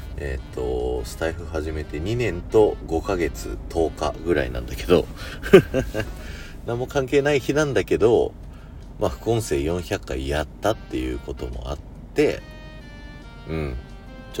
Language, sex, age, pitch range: Japanese, male, 40-59, 70-90 Hz